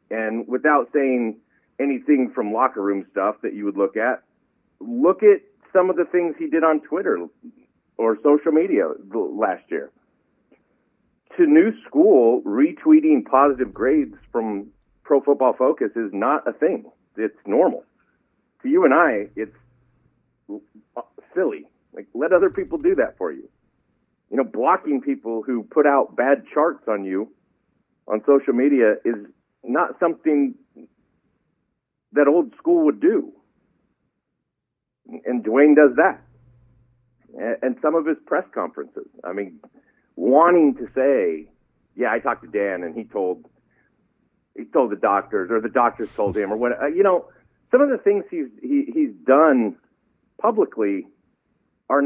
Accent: American